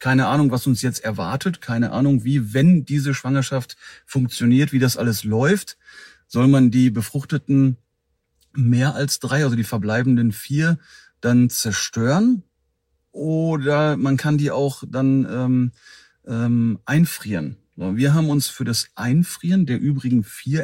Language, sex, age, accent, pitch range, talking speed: German, male, 40-59, German, 120-150 Hz, 140 wpm